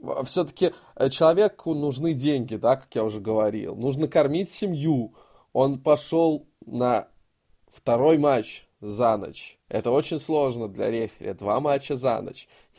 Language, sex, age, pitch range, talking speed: Russian, male, 20-39, 115-155 Hz, 130 wpm